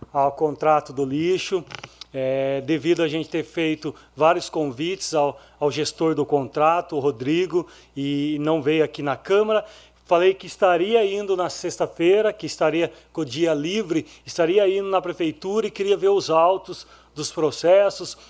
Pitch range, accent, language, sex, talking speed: 155-195 Hz, Brazilian, Portuguese, male, 155 wpm